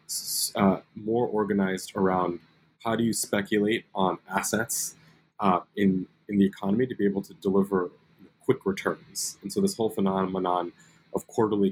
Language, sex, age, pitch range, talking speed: English, male, 30-49, 95-105 Hz, 150 wpm